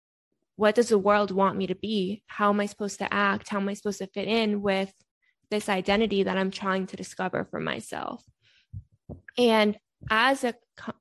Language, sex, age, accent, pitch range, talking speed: English, female, 10-29, American, 195-220 Hz, 190 wpm